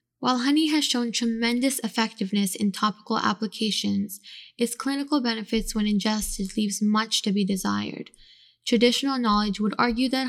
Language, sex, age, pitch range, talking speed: English, female, 10-29, 205-235 Hz, 140 wpm